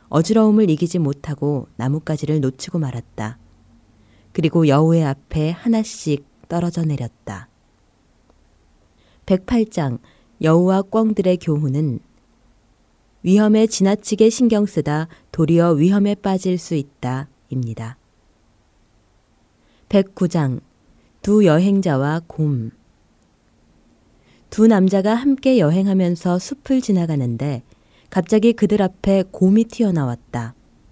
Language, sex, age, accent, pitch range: Korean, female, 20-39, native, 125-205 Hz